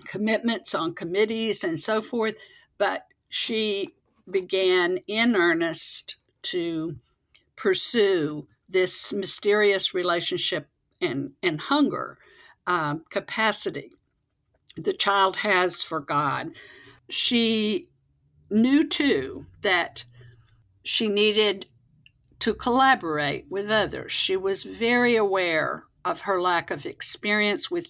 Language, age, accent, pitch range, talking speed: English, 60-79, American, 165-220 Hz, 100 wpm